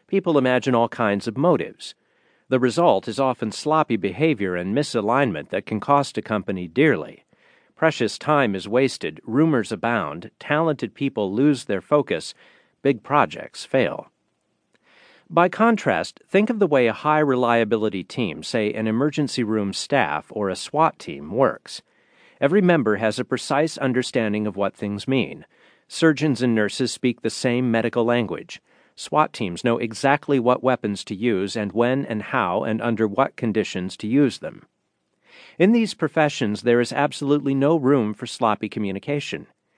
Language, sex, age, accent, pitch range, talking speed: English, male, 50-69, American, 110-145 Hz, 150 wpm